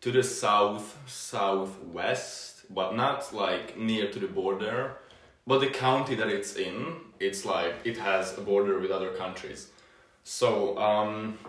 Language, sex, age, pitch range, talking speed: English, male, 20-39, 100-125 Hz, 140 wpm